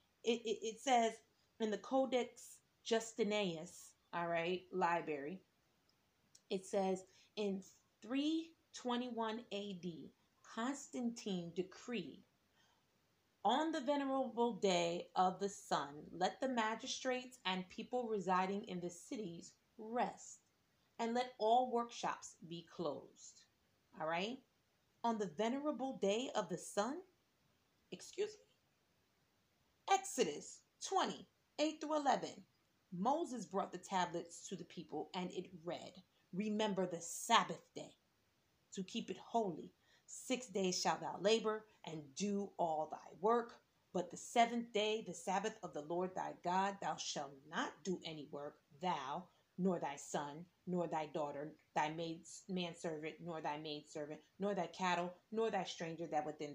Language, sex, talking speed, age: English, female, 130 wpm, 30-49